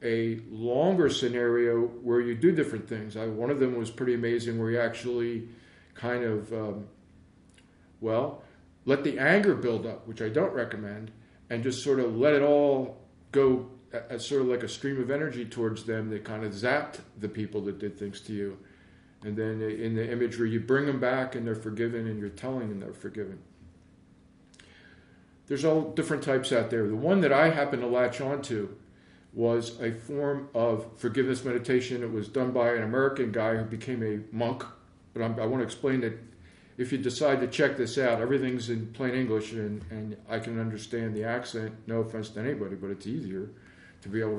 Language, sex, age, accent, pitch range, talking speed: English, male, 50-69, American, 105-125 Hz, 195 wpm